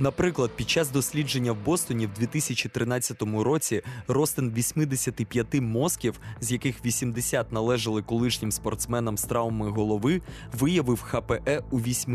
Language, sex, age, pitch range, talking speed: Ukrainian, male, 20-39, 115-145 Hz, 120 wpm